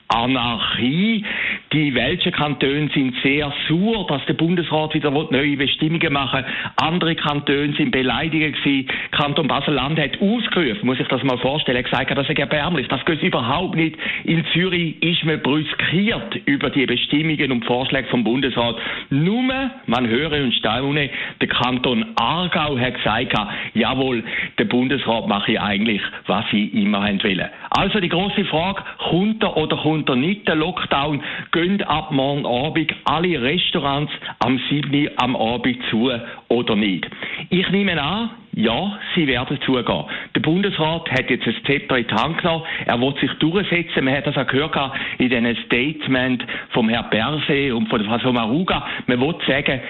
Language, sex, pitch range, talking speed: German, male, 130-170 Hz, 160 wpm